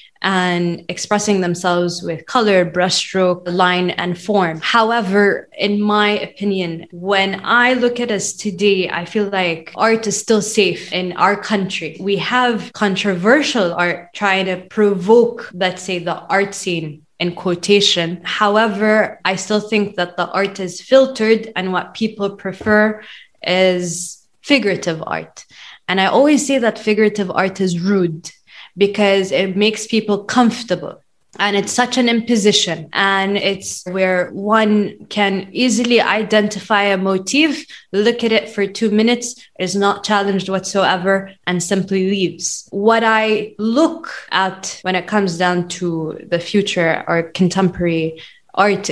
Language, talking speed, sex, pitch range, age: English, 140 wpm, female, 180-215 Hz, 20-39